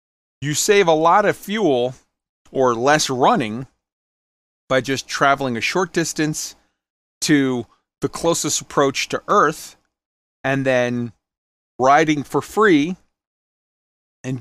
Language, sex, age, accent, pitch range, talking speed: English, male, 40-59, American, 120-160 Hz, 110 wpm